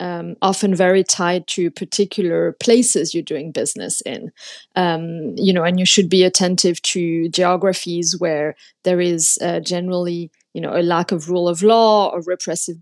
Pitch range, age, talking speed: 170-200 Hz, 30-49, 170 wpm